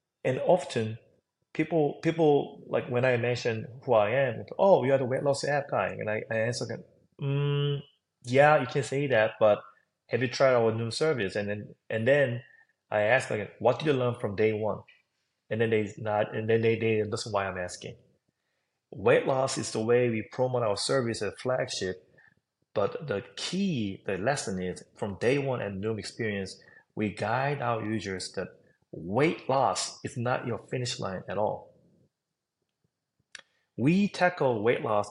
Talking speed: 175 wpm